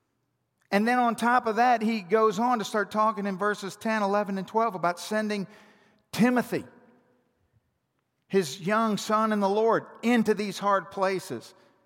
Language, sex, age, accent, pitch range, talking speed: English, male, 50-69, American, 165-220 Hz, 155 wpm